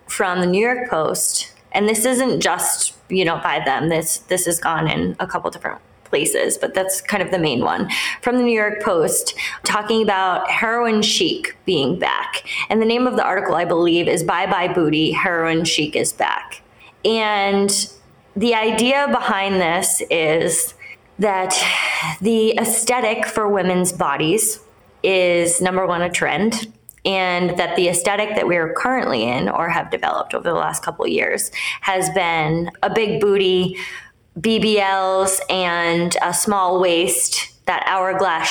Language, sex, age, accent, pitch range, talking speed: English, female, 20-39, American, 175-225 Hz, 160 wpm